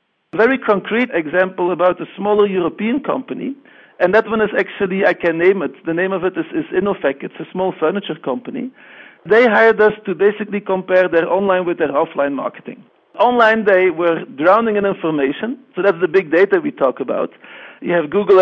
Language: English